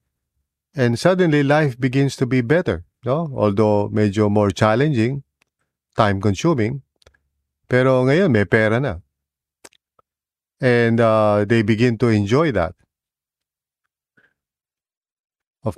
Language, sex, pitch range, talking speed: English, male, 95-130 Hz, 105 wpm